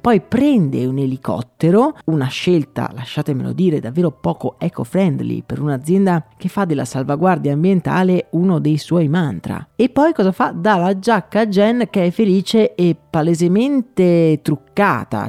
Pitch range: 140-190 Hz